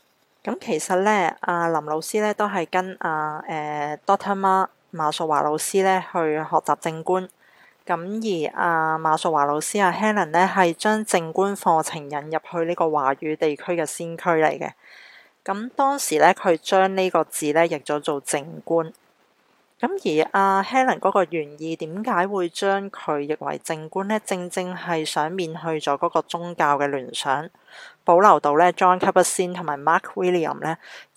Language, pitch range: Chinese, 155-190 Hz